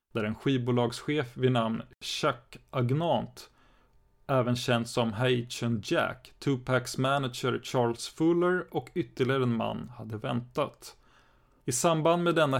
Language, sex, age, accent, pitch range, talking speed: Swedish, male, 30-49, native, 115-140 Hz, 125 wpm